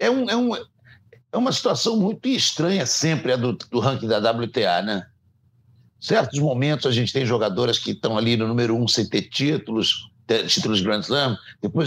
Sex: male